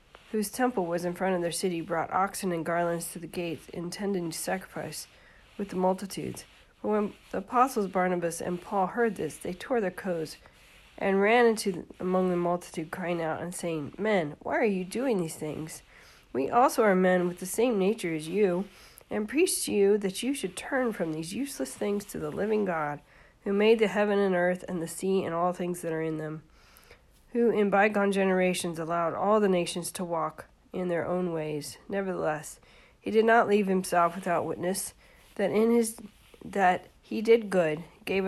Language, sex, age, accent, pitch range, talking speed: English, female, 40-59, American, 170-210 Hz, 190 wpm